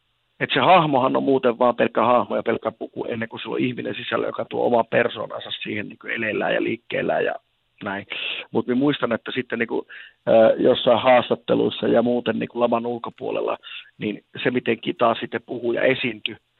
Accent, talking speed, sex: native, 180 wpm, male